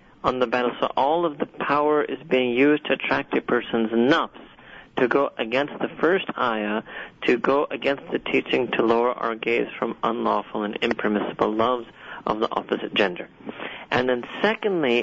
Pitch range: 115-140 Hz